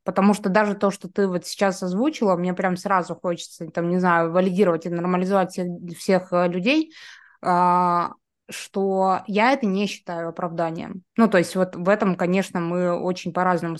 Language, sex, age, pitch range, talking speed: Russian, female, 20-39, 175-205 Hz, 160 wpm